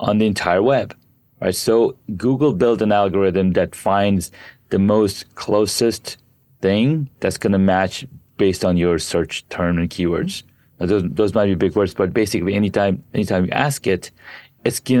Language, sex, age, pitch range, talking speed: English, male, 30-49, 95-120 Hz, 170 wpm